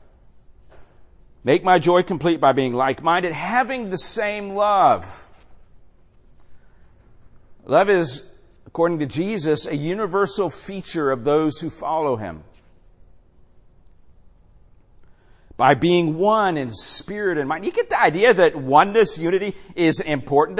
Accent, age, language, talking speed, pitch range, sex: American, 50-69, English, 115 wpm, 155-225 Hz, male